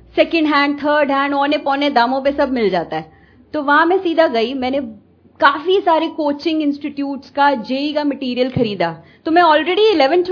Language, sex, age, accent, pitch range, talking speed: Hindi, female, 30-49, native, 255-325 Hz, 180 wpm